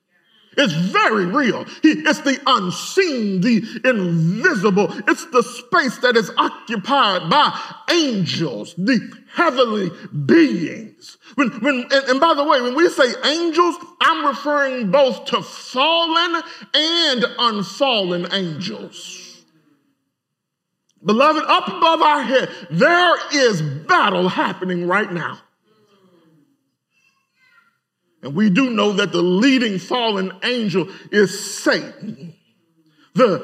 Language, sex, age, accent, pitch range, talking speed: English, male, 40-59, American, 195-315 Hz, 105 wpm